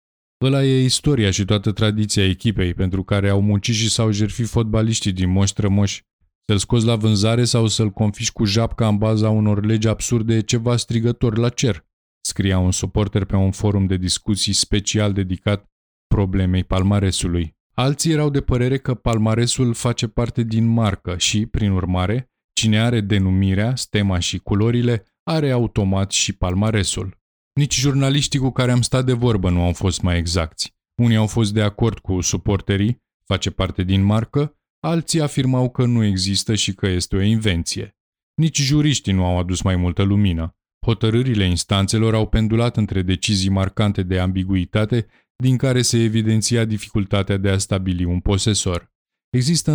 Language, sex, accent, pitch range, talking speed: Romanian, male, native, 95-120 Hz, 160 wpm